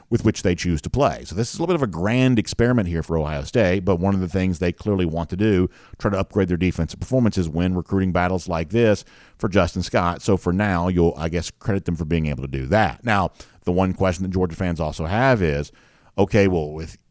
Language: English